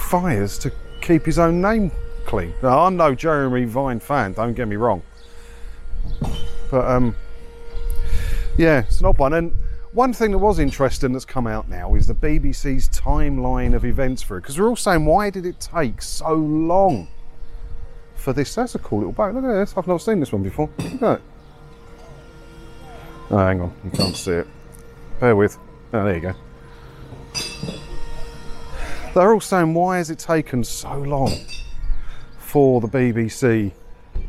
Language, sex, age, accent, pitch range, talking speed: English, male, 40-59, British, 95-140 Hz, 165 wpm